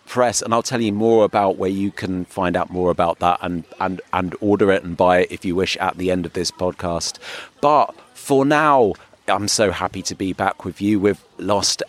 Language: English